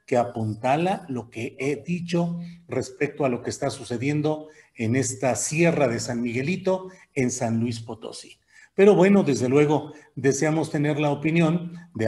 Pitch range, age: 125-175 Hz, 40-59